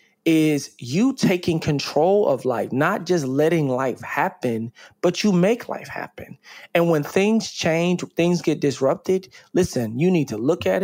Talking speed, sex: 160 wpm, male